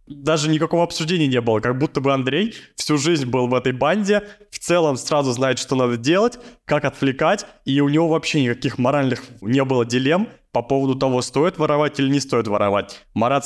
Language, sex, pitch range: Russian, male, 120-145 Hz